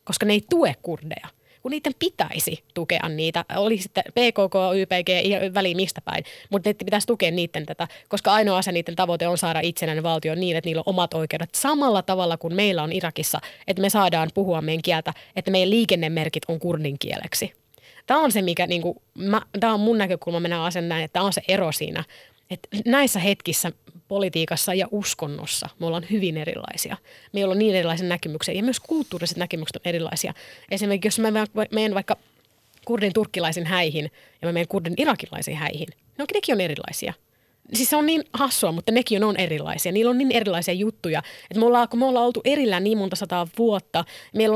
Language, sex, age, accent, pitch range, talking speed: Finnish, female, 30-49, native, 170-215 Hz, 190 wpm